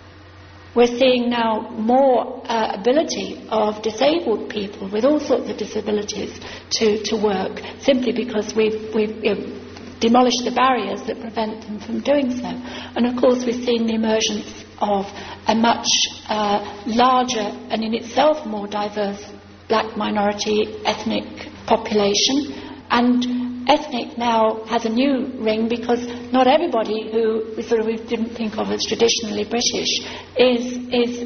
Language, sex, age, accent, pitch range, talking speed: English, female, 60-79, British, 215-240 Hz, 140 wpm